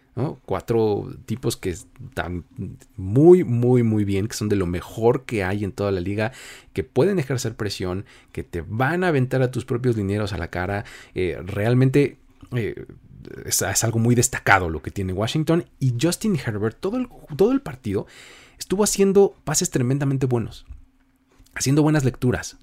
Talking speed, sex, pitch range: 165 wpm, male, 95-130 Hz